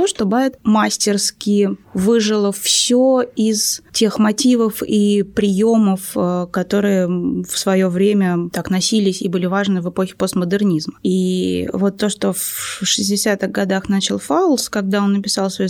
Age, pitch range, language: 20-39, 190-220 Hz, Russian